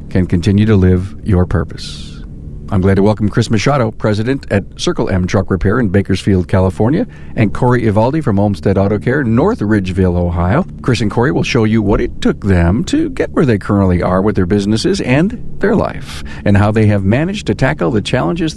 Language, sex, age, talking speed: English, male, 50-69, 200 wpm